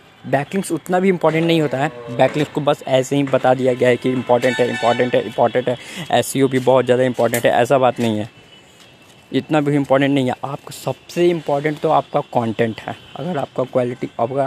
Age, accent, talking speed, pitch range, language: 20-39, native, 210 wpm, 125-160 Hz, Hindi